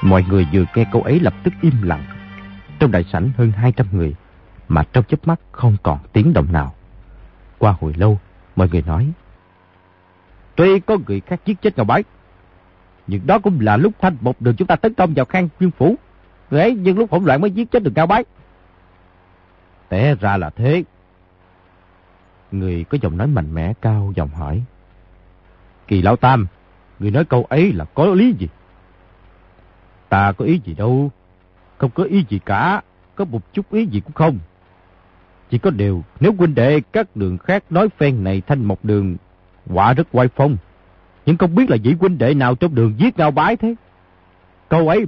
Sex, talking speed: male, 190 wpm